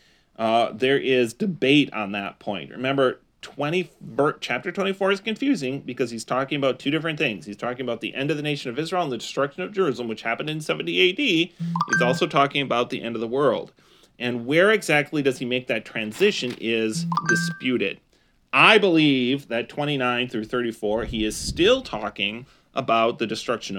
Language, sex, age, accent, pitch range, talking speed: English, male, 30-49, American, 110-145 Hz, 180 wpm